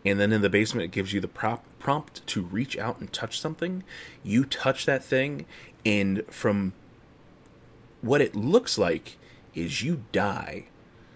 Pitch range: 95-130 Hz